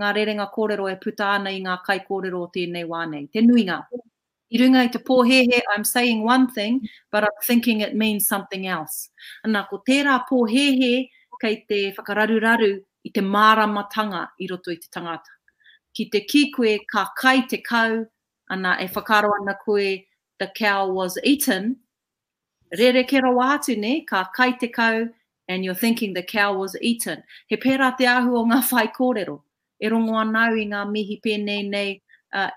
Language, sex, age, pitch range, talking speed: English, female, 30-49, 200-255 Hz, 155 wpm